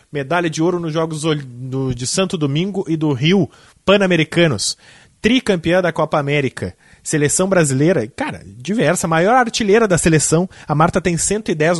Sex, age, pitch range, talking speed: male, 20-39, 150-190 Hz, 140 wpm